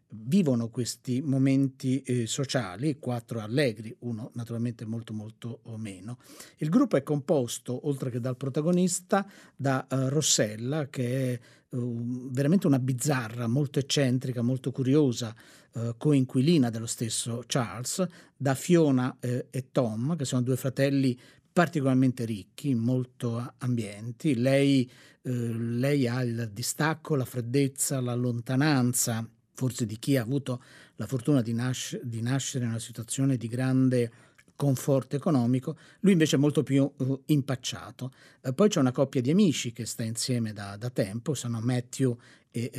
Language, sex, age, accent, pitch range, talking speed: Italian, male, 50-69, native, 120-140 Hz, 130 wpm